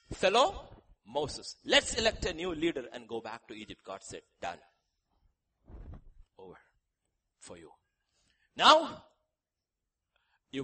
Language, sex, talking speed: English, male, 115 wpm